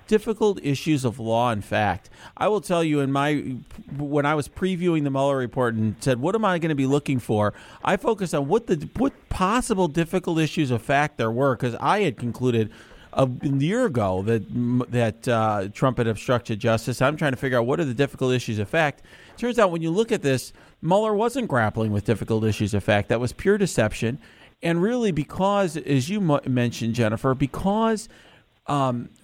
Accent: American